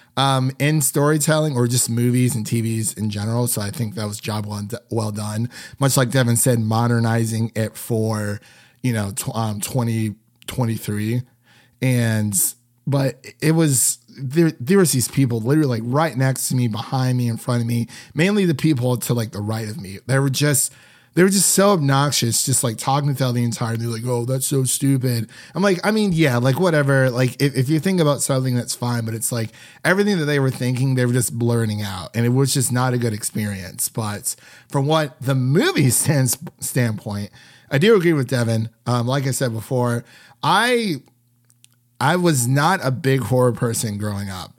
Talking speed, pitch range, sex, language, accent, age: 195 wpm, 115-135 Hz, male, English, American, 30-49